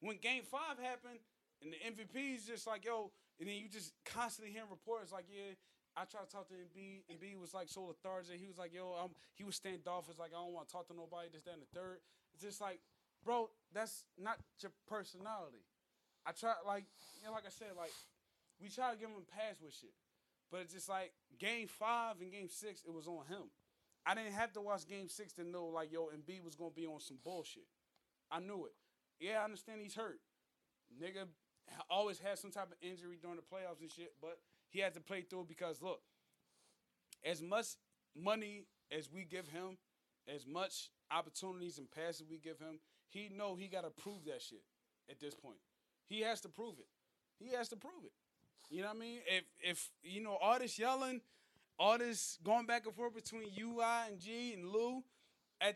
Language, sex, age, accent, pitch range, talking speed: English, male, 20-39, American, 175-225 Hz, 215 wpm